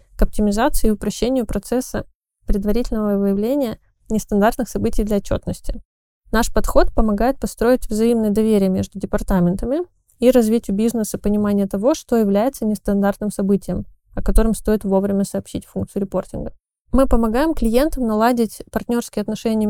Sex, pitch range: female, 200-235 Hz